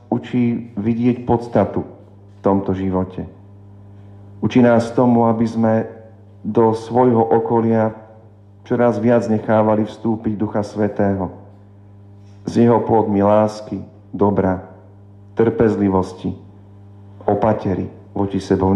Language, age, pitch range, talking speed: Slovak, 50-69, 100-110 Hz, 95 wpm